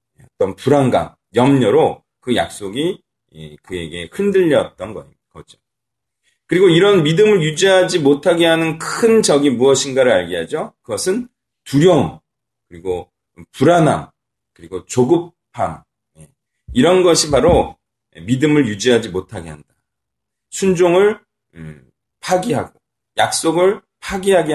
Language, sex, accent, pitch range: Korean, male, native, 120-195 Hz